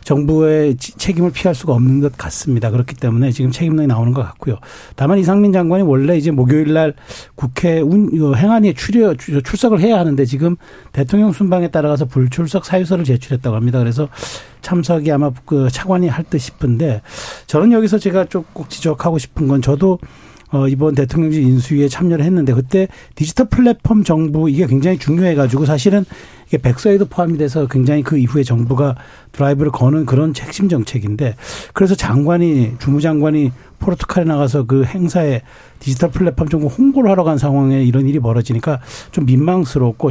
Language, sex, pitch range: Korean, male, 130-175 Hz